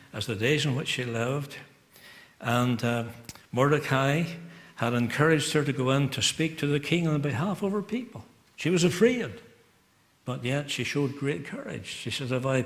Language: English